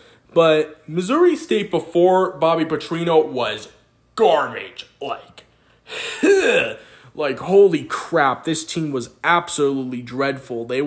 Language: English